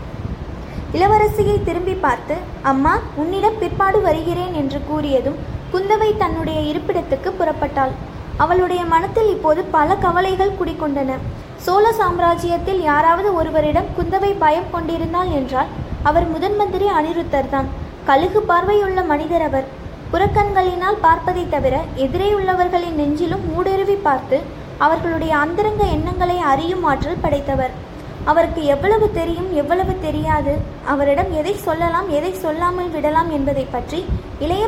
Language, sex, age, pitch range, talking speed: Tamil, female, 20-39, 300-375 Hz, 105 wpm